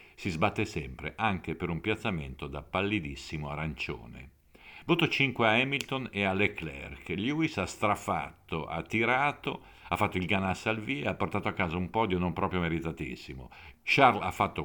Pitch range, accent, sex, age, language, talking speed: 85-110 Hz, native, male, 50-69, Italian, 165 wpm